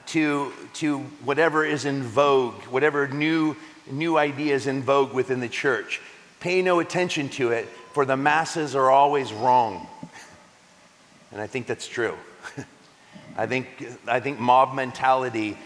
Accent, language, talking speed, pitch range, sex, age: American, English, 140 wpm, 125-155 Hz, male, 40-59